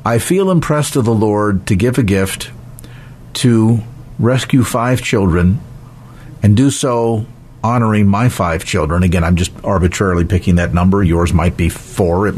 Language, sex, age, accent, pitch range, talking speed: English, male, 50-69, American, 110-160 Hz, 160 wpm